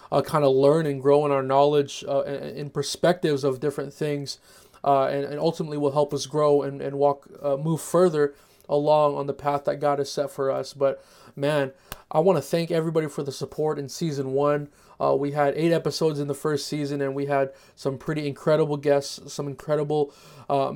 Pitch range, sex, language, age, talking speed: 140-150 Hz, male, English, 20-39, 210 wpm